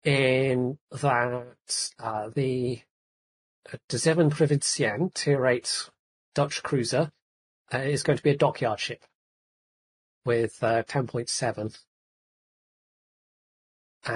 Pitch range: 115-140 Hz